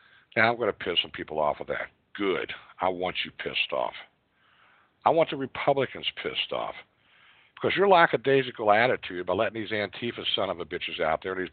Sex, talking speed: male, 175 wpm